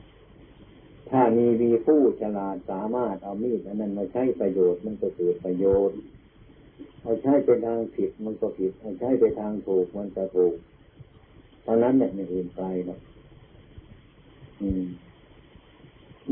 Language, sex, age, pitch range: Thai, male, 60-79, 95-120 Hz